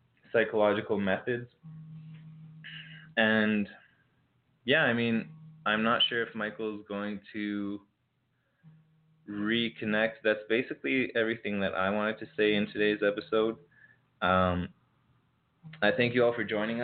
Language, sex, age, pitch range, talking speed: English, male, 20-39, 100-125 Hz, 115 wpm